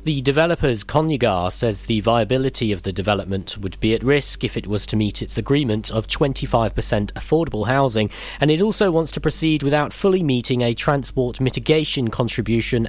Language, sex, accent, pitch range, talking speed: English, male, British, 110-145 Hz, 170 wpm